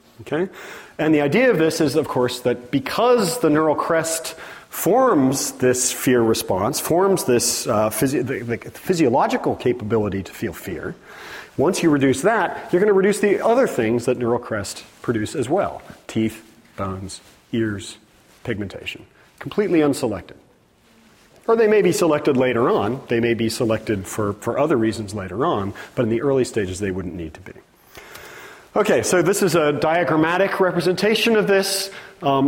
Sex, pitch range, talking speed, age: male, 115-165 Hz, 165 wpm, 40-59